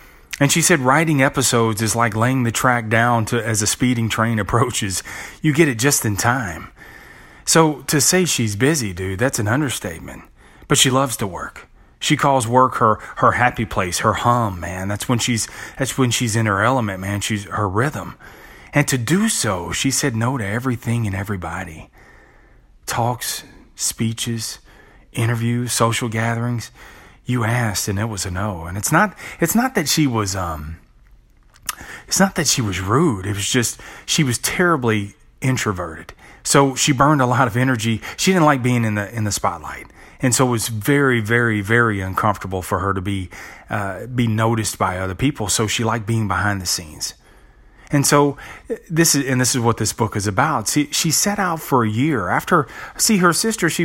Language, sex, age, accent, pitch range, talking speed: English, male, 30-49, American, 105-140 Hz, 190 wpm